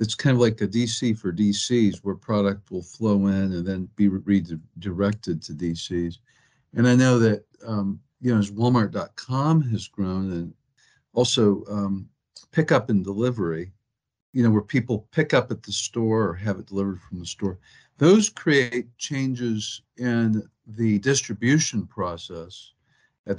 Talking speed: 155 wpm